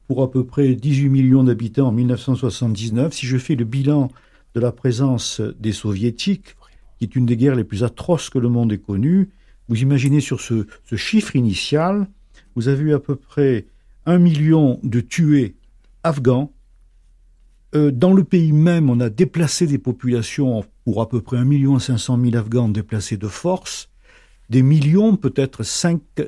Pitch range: 120-150 Hz